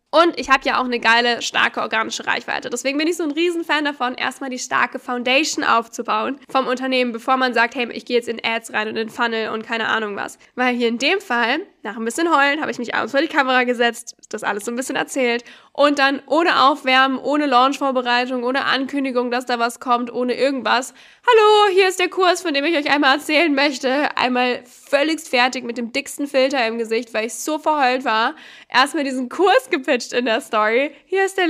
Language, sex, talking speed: German, female, 215 wpm